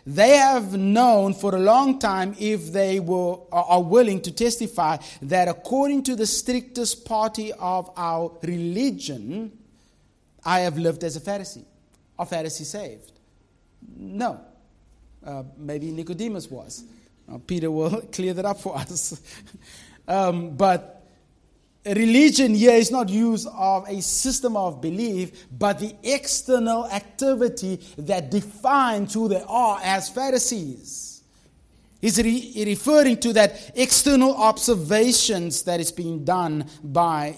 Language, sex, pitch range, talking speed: English, male, 175-240 Hz, 125 wpm